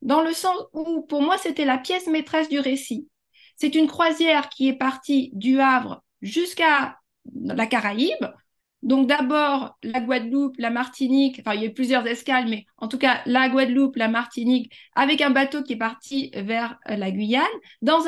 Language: French